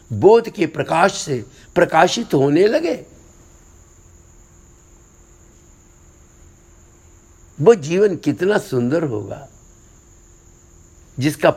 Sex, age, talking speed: male, 60-79, 65 wpm